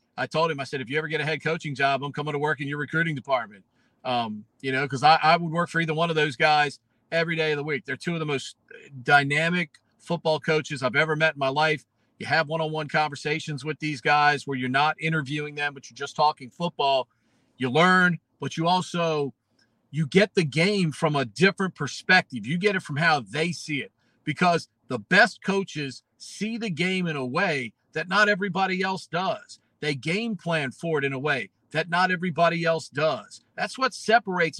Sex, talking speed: male, 215 wpm